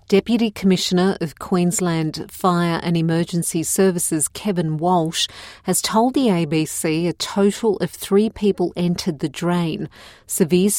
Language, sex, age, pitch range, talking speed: English, female, 40-59, 165-200 Hz, 130 wpm